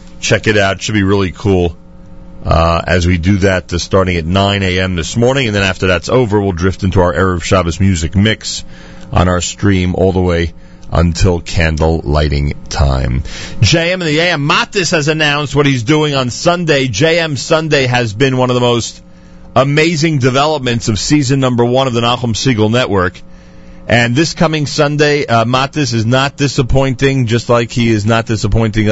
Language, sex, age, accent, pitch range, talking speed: English, male, 40-59, American, 95-135 Hz, 185 wpm